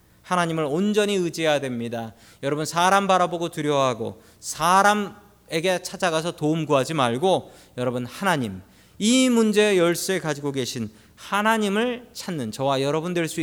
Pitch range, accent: 125-195 Hz, native